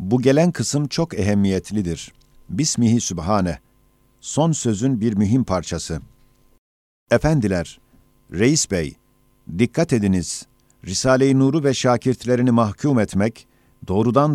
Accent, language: native, Turkish